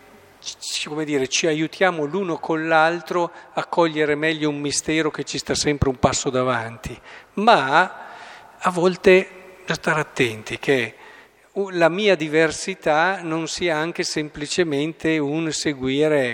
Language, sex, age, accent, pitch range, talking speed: Italian, male, 50-69, native, 135-180 Hz, 130 wpm